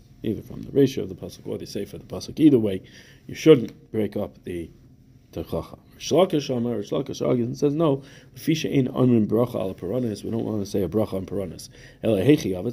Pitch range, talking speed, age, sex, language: 100-130 Hz, 170 wpm, 30-49, male, English